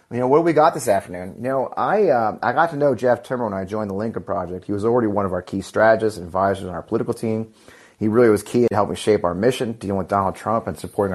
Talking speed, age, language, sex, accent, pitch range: 285 wpm, 30-49, English, male, American, 95-125 Hz